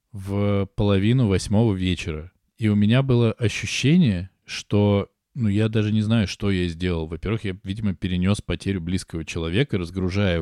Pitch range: 90-110 Hz